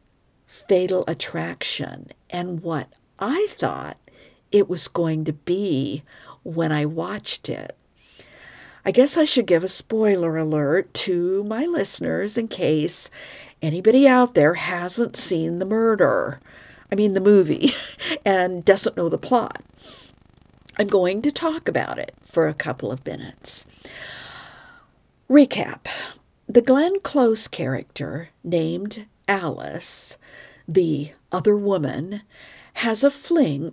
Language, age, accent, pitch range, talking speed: English, 50-69, American, 165-235 Hz, 120 wpm